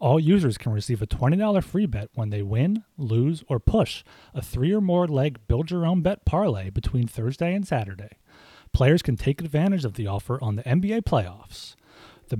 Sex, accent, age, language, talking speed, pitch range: male, American, 30-49, English, 165 wpm, 110-150 Hz